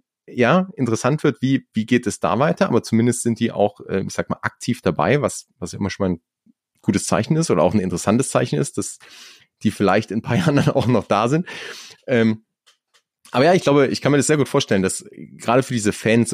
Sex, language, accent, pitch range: male, German, German, 100-120 Hz